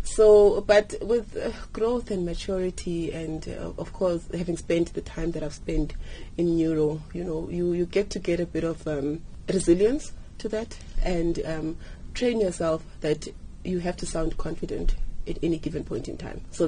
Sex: female